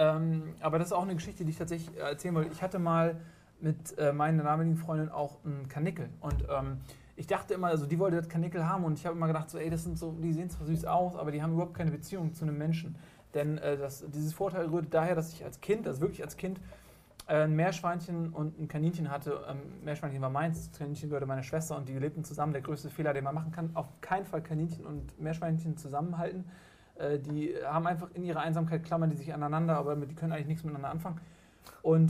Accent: German